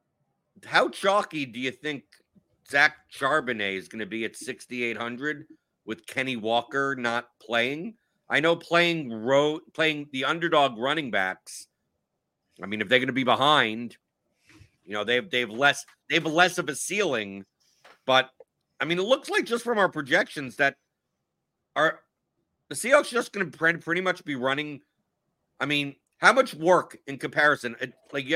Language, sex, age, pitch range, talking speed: English, male, 50-69, 120-160 Hz, 160 wpm